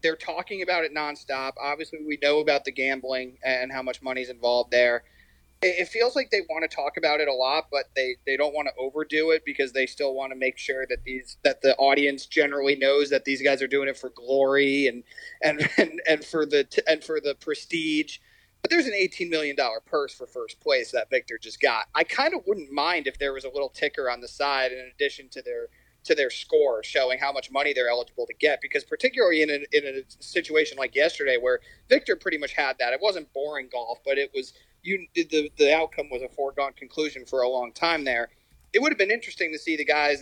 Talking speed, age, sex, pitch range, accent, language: 230 wpm, 30-49, male, 130-175 Hz, American, English